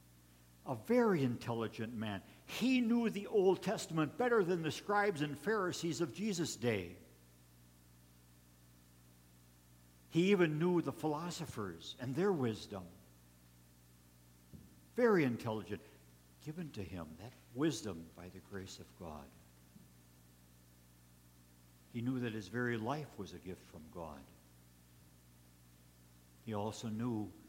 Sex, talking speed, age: male, 115 wpm, 60-79